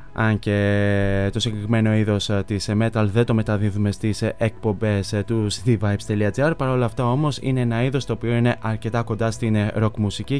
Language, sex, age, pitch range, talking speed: Greek, male, 20-39, 110-130 Hz, 160 wpm